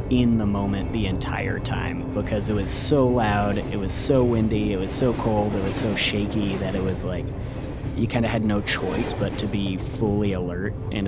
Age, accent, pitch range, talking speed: 30-49, American, 100-125 Hz, 210 wpm